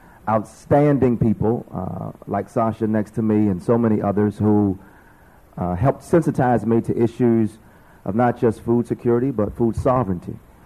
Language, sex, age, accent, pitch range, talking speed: English, male, 40-59, American, 105-125 Hz, 150 wpm